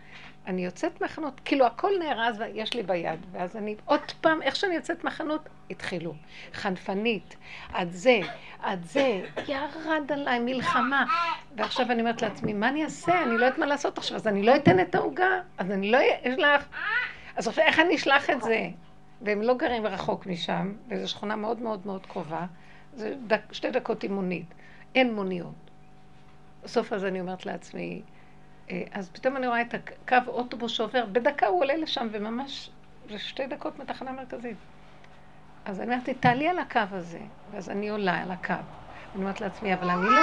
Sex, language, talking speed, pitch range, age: female, Hebrew, 170 wpm, 190-265 Hz, 60-79